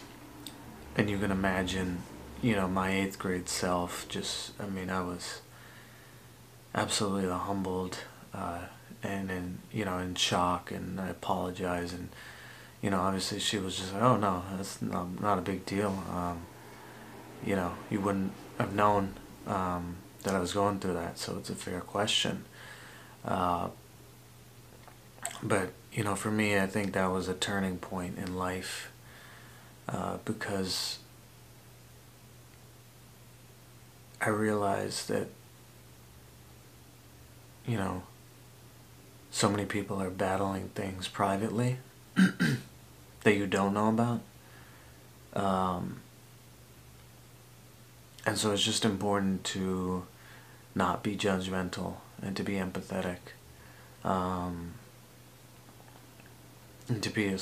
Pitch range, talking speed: 90-100 Hz, 120 wpm